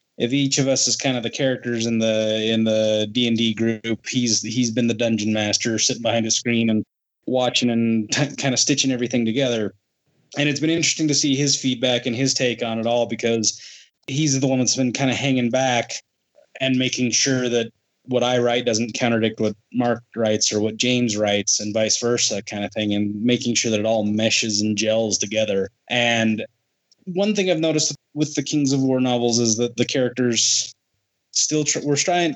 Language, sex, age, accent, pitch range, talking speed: English, male, 20-39, American, 115-130 Hz, 210 wpm